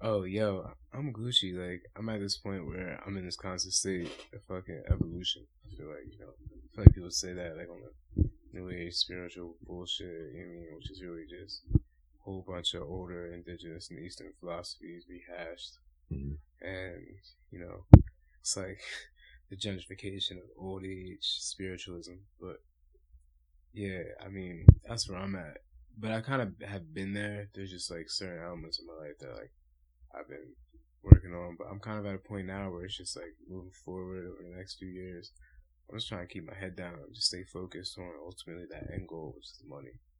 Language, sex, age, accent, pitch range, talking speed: English, male, 20-39, American, 85-100 Hz, 190 wpm